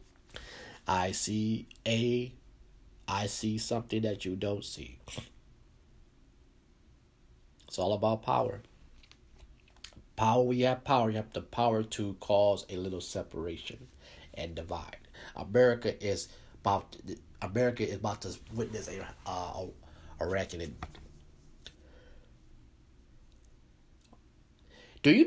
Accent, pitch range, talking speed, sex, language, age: American, 95-140 Hz, 130 wpm, male, English, 30-49